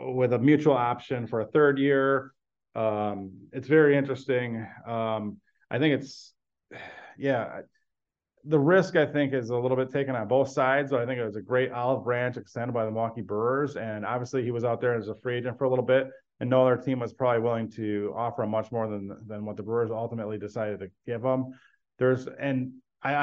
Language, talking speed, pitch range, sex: English, 210 wpm, 110-130 Hz, male